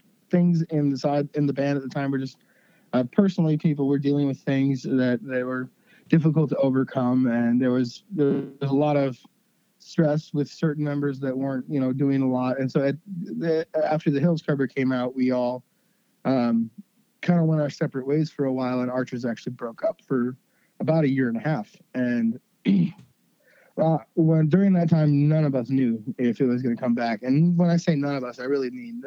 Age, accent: 20-39, American